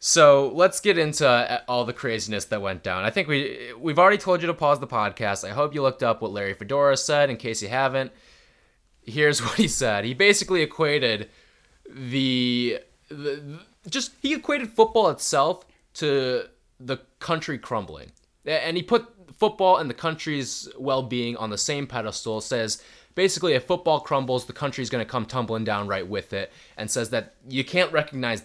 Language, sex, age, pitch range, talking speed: English, male, 20-39, 120-175 Hz, 180 wpm